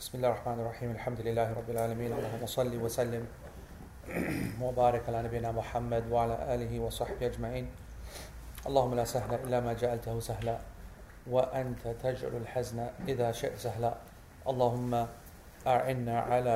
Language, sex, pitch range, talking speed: English, male, 115-125 Hz, 110 wpm